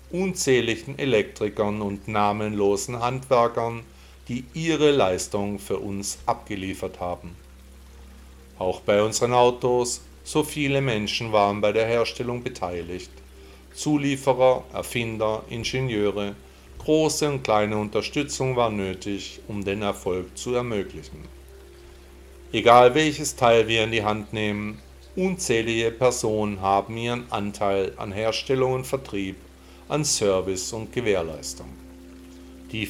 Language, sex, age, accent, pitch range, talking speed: German, male, 50-69, German, 95-120 Hz, 110 wpm